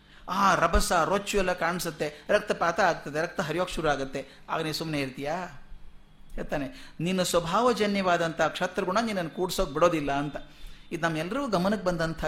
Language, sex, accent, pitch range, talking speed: Kannada, male, native, 150-210 Hz, 135 wpm